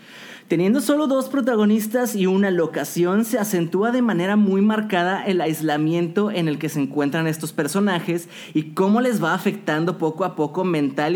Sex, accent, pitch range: male, Mexican, 160-215 Hz